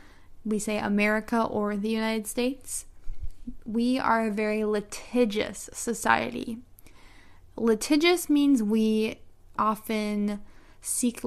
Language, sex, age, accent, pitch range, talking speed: English, female, 10-29, American, 210-255 Hz, 95 wpm